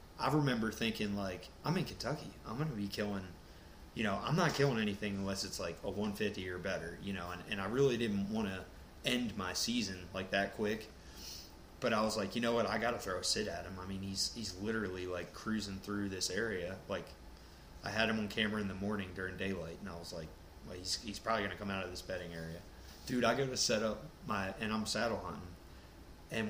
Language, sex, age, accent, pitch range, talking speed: English, male, 20-39, American, 90-110 Hz, 240 wpm